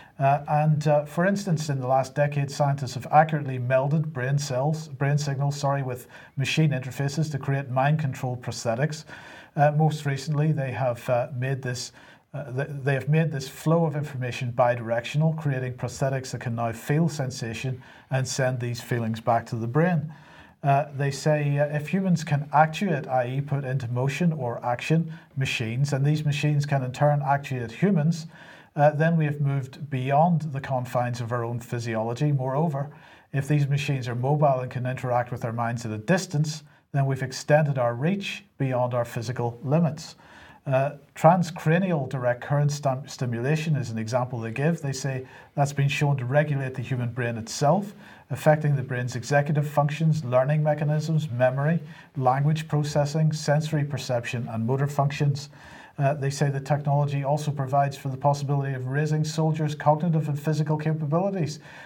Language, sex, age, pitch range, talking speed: English, male, 40-59, 130-155 Hz, 165 wpm